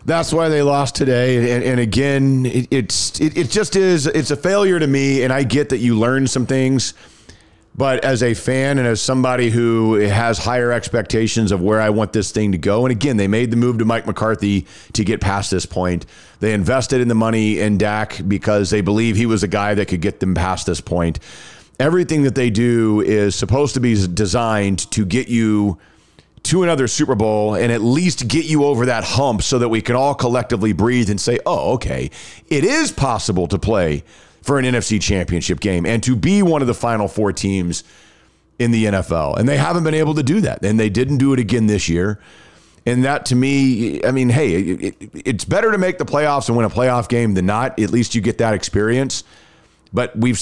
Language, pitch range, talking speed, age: English, 105-130 Hz, 210 wpm, 40-59